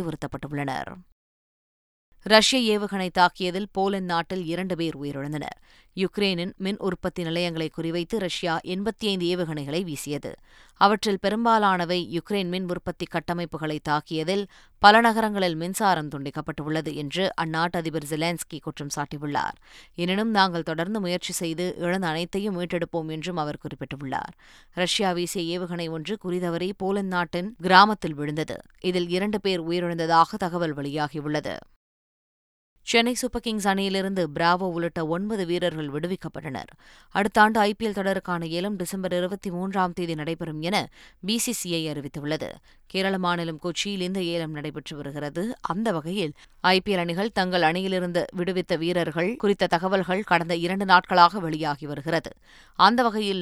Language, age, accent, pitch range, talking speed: Tamil, 20-39, native, 160-190 Hz, 115 wpm